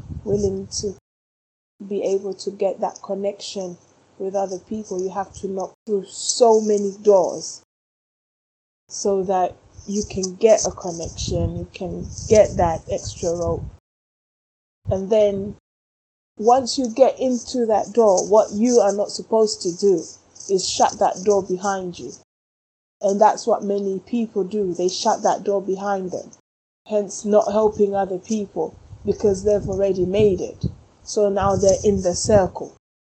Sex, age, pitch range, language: female, 20-39, 190-220 Hz, English